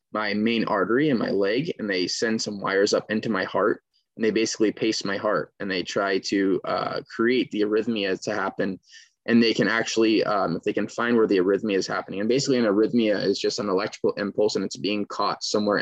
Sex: male